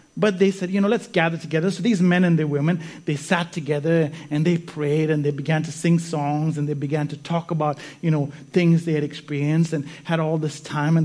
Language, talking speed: English, 240 wpm